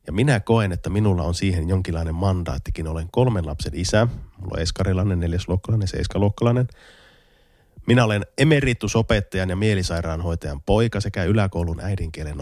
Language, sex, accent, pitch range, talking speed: Finnish, male, native, 85-105 Hz, 130 wpm